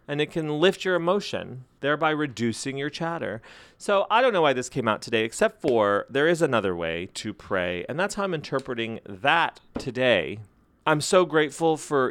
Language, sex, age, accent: English, male, 30-49, American